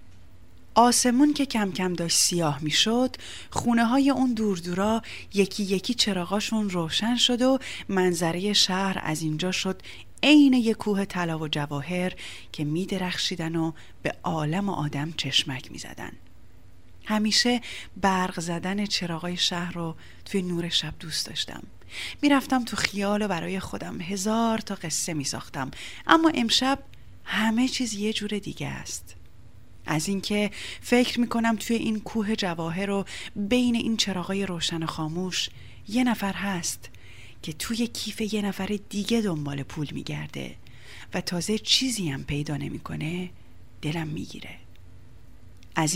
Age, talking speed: 30-49, 130 wpm